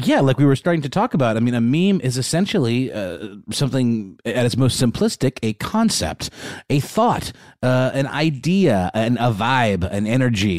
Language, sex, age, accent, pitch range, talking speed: English, male, 30-49, American, 100-125 Hz, 180 wpm